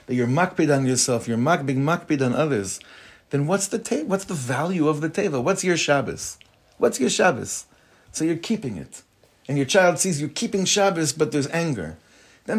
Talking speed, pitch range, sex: 195 wpm, 120-170 Hz, male